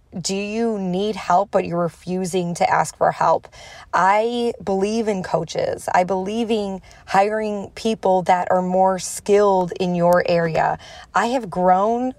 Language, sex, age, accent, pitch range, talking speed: English, female, 20-39, American, 175-215 Hz, 150 wpm